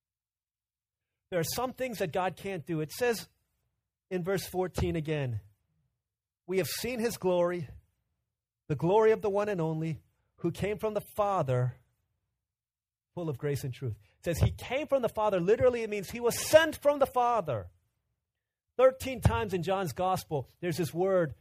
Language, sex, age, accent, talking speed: English, male, 40-59, American, 170 wpm